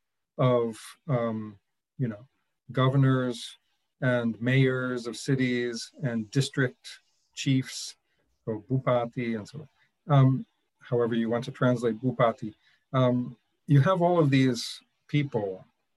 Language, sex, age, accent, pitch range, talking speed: English, male, 50-69, American, 125-150 Hz, 120 wpm